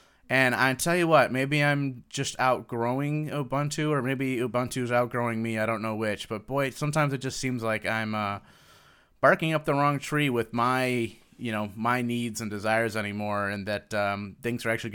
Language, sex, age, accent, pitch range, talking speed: English, male, 30-49, American, 110-130 Hz, 195 wpm